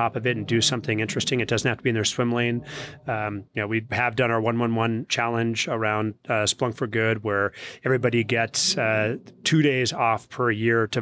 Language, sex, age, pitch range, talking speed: English, male, 30-49, 115-135 Hz, 210 wpm